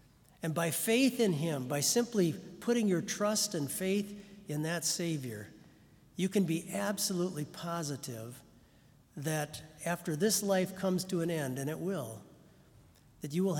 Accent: American